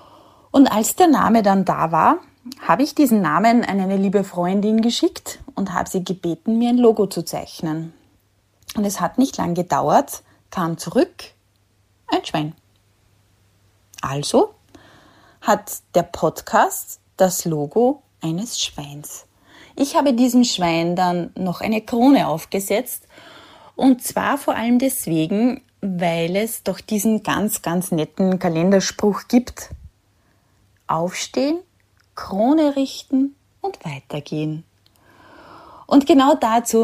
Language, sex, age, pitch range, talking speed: German, female, 20-39, 165-235 Hz, 120 wpm